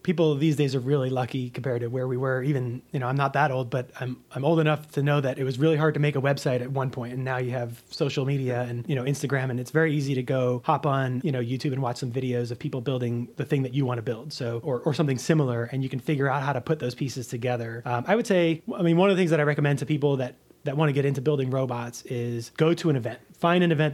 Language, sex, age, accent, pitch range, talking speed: English, male, 30-49, American, 125-150 Hz, 300 wpm